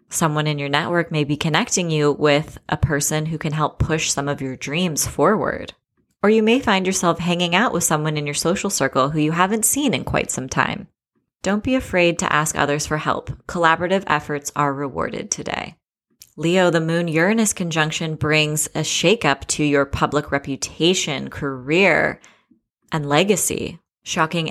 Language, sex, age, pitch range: English, female, 20-39, 145-180 Hz